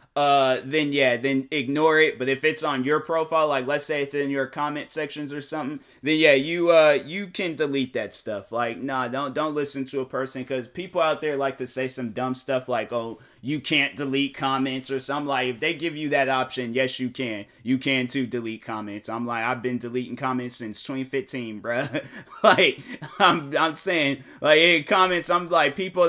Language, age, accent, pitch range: English, 20-39, American, 130-165 Hz